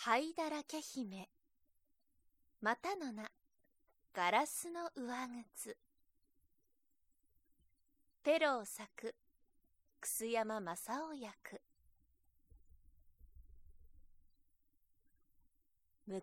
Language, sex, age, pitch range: Japanese, female, 20-39, 205-300 Hz